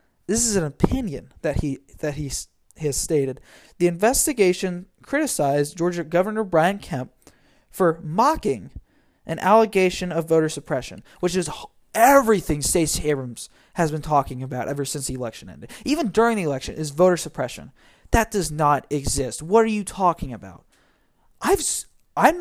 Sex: male